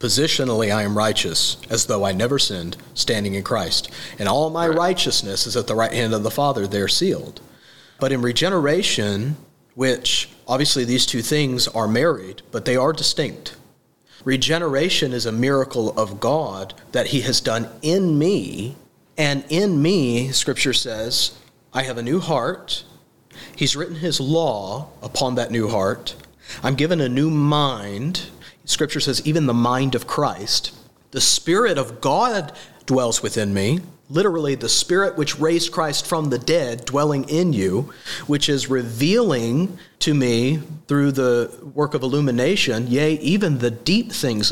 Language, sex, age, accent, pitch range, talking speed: English, male, 40-59, American, 120-155 Hz, 155 wpm